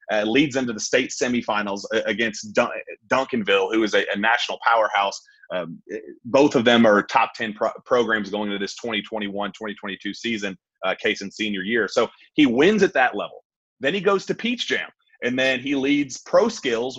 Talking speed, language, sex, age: 185 wpm, English, male, 30-49